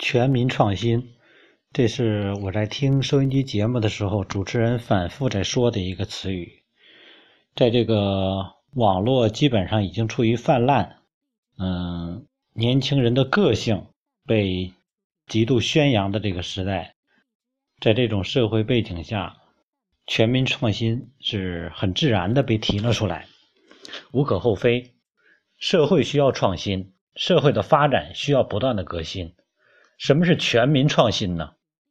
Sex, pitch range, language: male, 105-145 Hz, Chinese